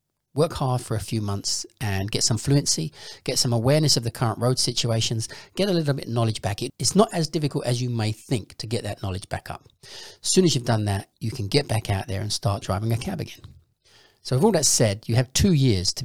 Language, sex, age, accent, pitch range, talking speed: English, male, 40-59, British, 100-125 Hz, 250 wpm